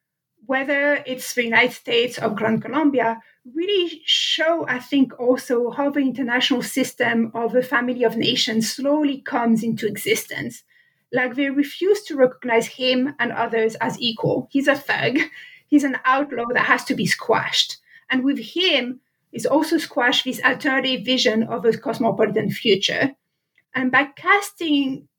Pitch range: 240-290 Hz